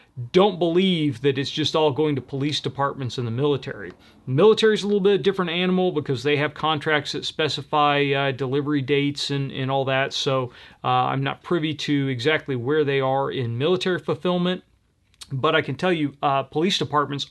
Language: English